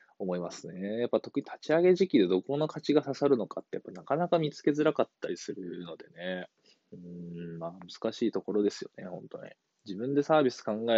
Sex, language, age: male, Japanese, 20-39